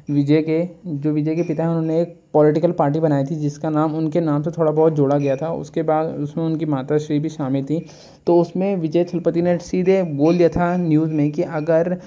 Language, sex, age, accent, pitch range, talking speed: Hindi, male, 20-39, native, 155-170 Hz, 225 wpm